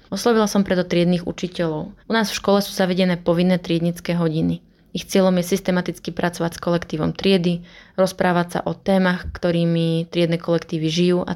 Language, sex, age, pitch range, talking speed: Slovak, female, 20-39, 165-185 Hz, 165 wpm